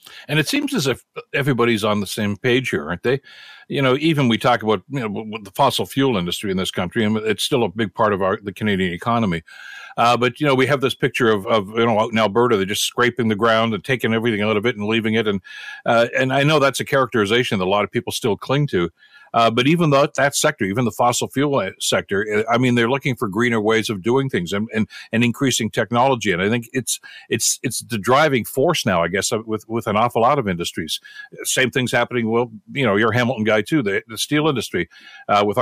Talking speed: 245 wpm